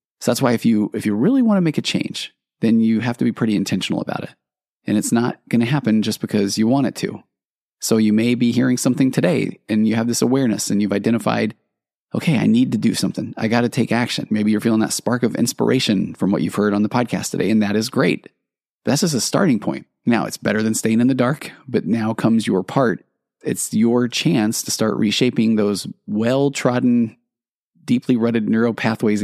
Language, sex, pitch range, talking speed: English, male, 110-130 Hz, 225 wpm